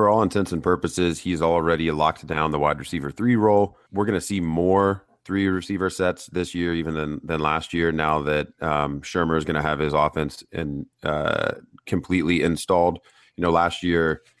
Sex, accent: male, American